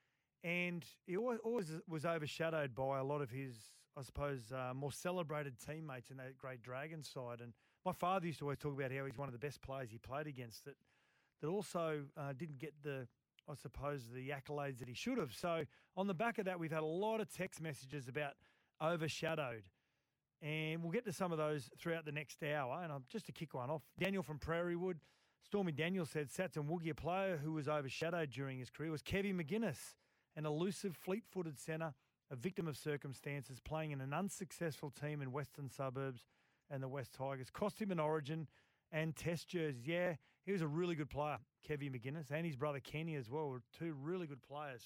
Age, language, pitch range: 30-49, English, 140-170 Hz